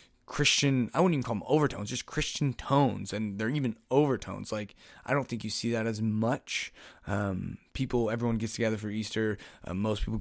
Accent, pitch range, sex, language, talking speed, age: American, 115-160 Hz, male, English, 195 wpm, 20-39